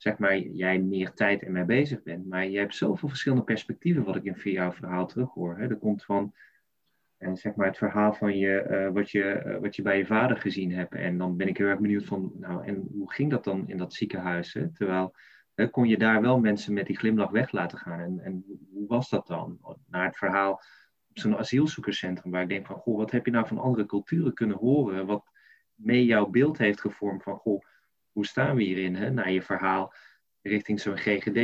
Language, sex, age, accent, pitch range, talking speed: Dutch, male, 20-39, Dutch, 100-120 Hz, 230 wpm